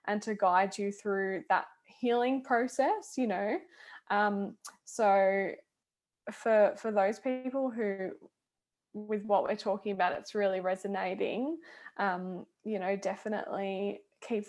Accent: Australian